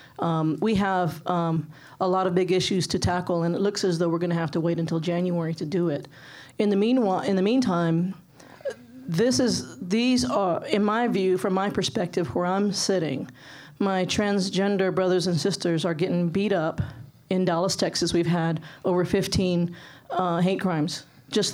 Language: English